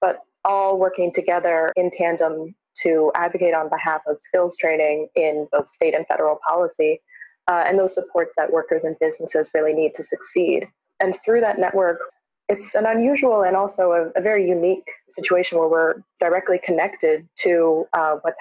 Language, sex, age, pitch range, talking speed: English, female, 20-39, 165-195 Hz, 170 wpm